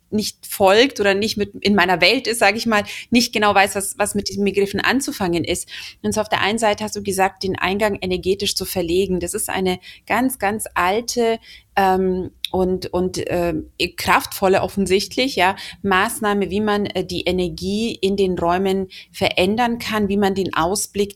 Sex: female